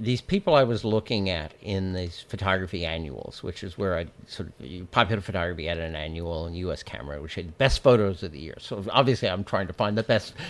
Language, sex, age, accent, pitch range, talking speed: English, male, 60-79, American, 100-135 Hz, 225 wpm